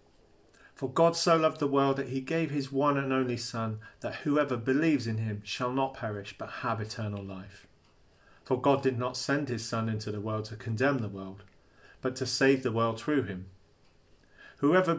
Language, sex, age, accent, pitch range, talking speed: English, male, 40-59, British, 105-135 Hz, 190 wpm